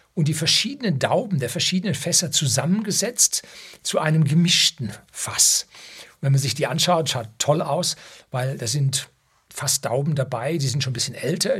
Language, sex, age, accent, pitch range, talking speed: German, male, 60-79, German, 135-175 Hz, 170 wpm